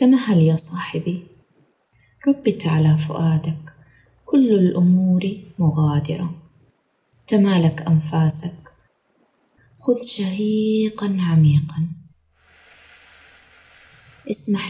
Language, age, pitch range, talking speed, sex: Arabic, 20-39, 140-205 Hz, 60 wpm, female